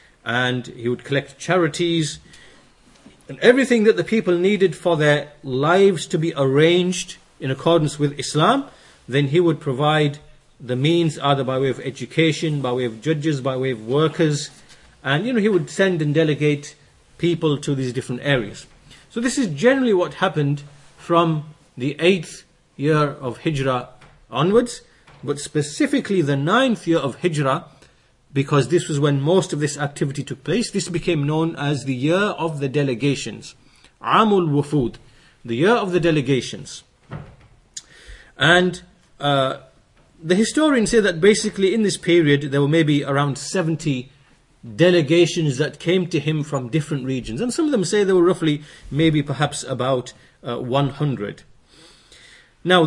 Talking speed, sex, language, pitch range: 155 wpm, male, English, 140-180 Hz